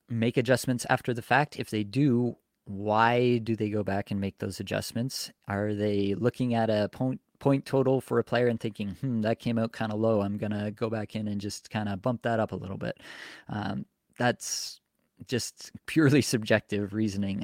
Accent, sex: American, male